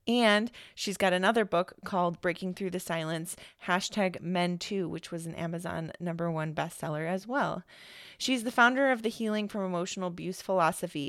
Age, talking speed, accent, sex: 30-49, 175 wpm, American, female